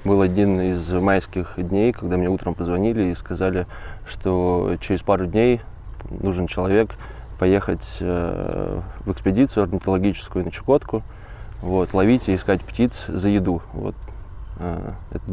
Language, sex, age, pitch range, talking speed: Russian, male, 20-39, 90-100 Hz, 125 wpm